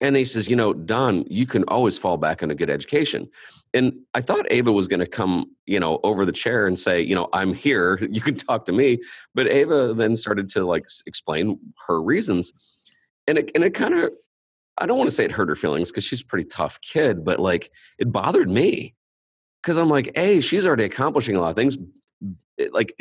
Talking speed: 225 wpm